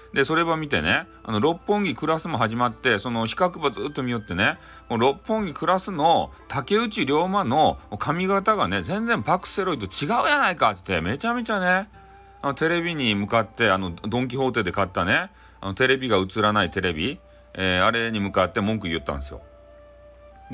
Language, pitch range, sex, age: Japanese, 100-165 Hz, male, 40-59